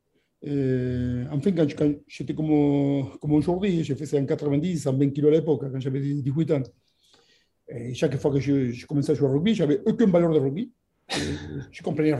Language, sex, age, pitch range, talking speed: French, male, 50-69, 140-165 Hz, 205 wpm